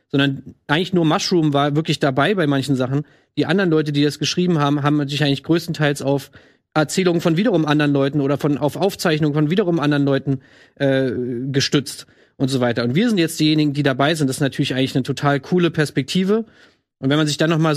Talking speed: 215 wpm